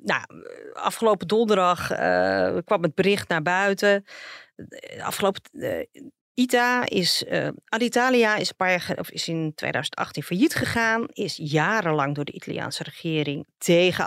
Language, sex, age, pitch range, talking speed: Dutch, female, 40-59, 175-235 Hz, 140 wpm